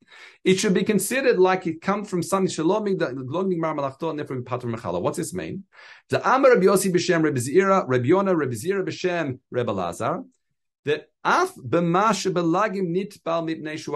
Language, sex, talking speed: English, male, 70 wpm